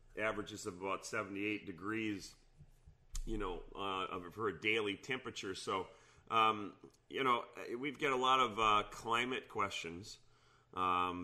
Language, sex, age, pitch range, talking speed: English, male, 30-49, 100-125 Hz, 135 wpm